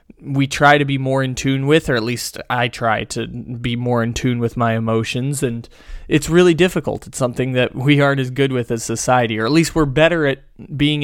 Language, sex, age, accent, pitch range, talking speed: English, male, 20-39, American, 115-140 Hz, 230 wpm